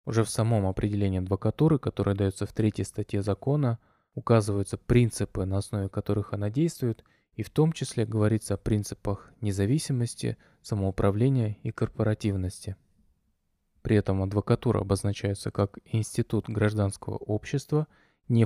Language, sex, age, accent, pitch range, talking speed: Russian, male, 20-39, native, 100-115 Hz, 125 wpm